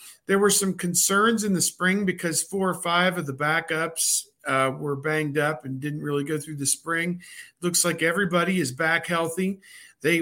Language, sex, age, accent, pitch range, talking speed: English, male, 50-69, American, 140-170 Hz, 190 wpm